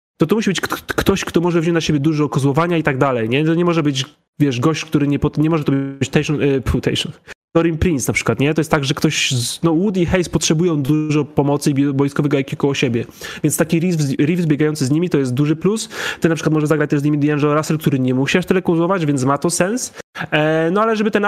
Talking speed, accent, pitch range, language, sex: 270 wpm, native, 135-170 Hz, Polish, male